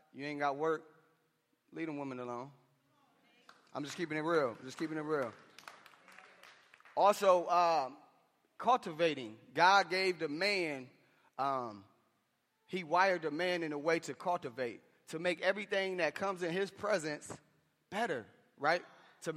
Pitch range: 160-200 Hz